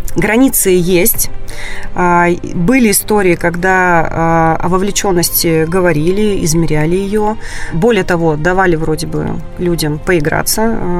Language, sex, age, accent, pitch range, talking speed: Russian, female, 30-49, native, 165-185 Hz, 95 wpm